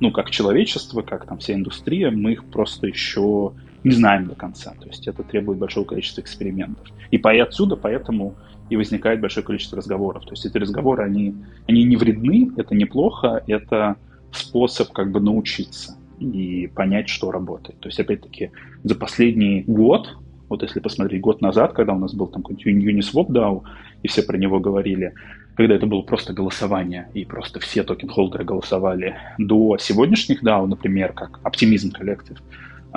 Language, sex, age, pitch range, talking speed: Russian, male, 20-39, 95-110 Hz, 165 wpm